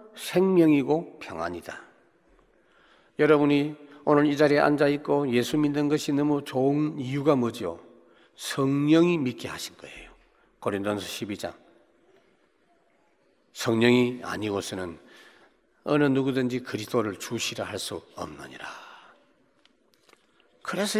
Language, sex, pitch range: Korean, male, 110-155 Hz